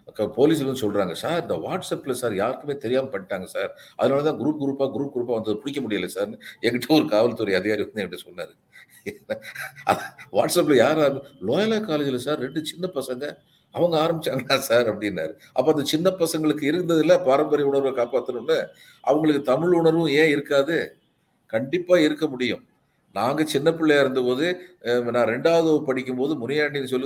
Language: Tamil